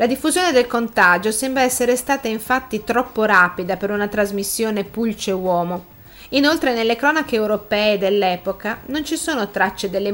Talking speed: 140 wpm